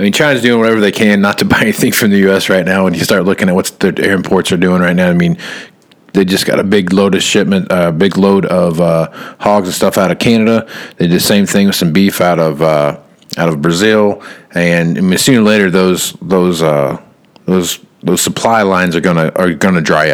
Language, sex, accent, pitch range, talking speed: English, male, American, 90-105 Hz, 245 wpm